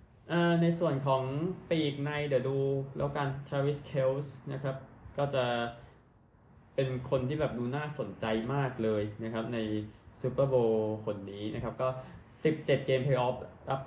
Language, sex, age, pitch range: Thai, male, 20-39, 110-135 Hz